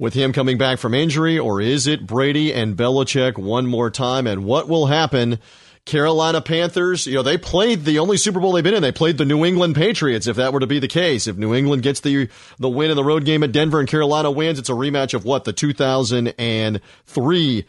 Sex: male